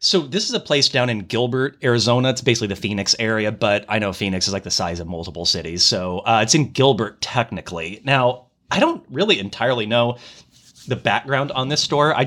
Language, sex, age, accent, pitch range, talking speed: English, male, 30-49, American, 100-130 Hz, 210 wpm